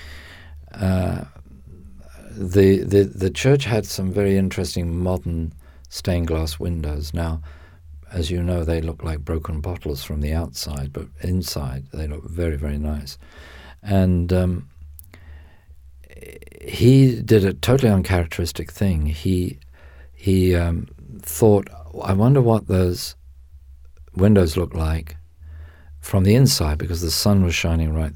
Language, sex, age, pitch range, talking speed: English, male, 50-69, 75-95 Hz, 130 wpm